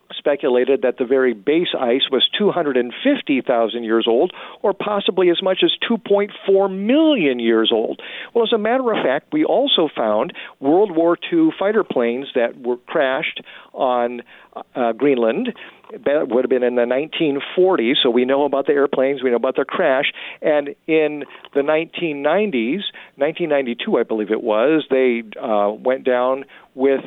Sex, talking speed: male, 155 wpm